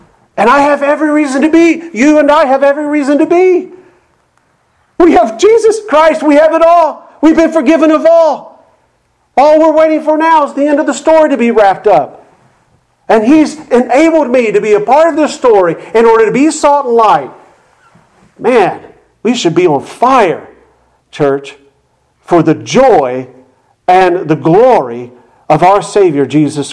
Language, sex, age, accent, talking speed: English, male, 50-69, American, 175 wpm